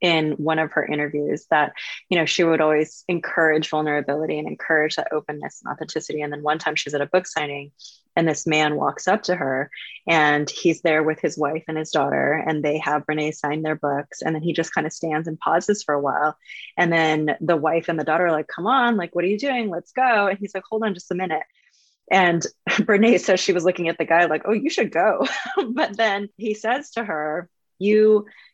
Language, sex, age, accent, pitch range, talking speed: English, female, 20-39, American, 155-175 Hz, 230 wpm